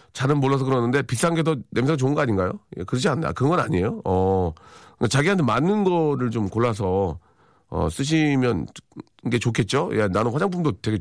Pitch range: 95-125 Hz